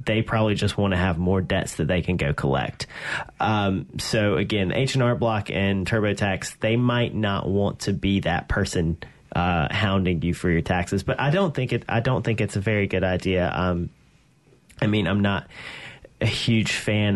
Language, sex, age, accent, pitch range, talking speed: English, male, 30-49, American, 90-115 Hz, 200 wpm